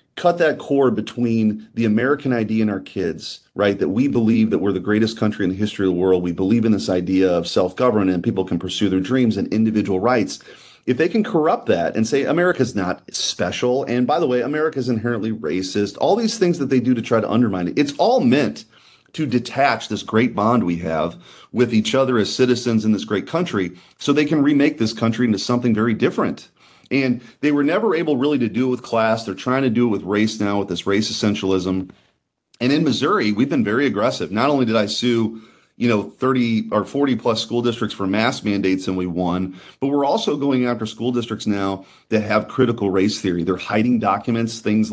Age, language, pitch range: 30-49, English, 100-125 Hz